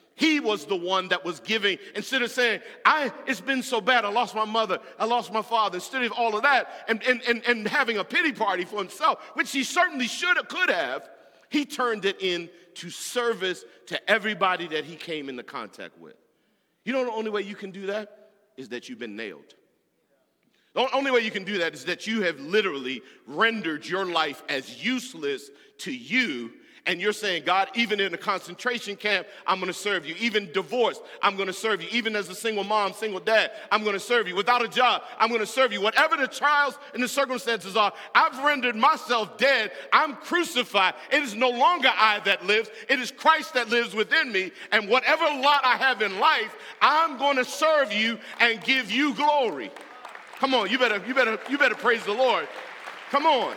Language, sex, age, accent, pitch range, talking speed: English, male, 40-59, American, 200-260 Hz, 210 wpm